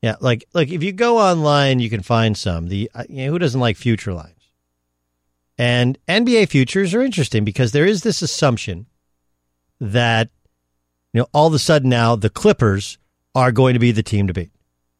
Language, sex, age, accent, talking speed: English, male, 50-69, American, 190 wpm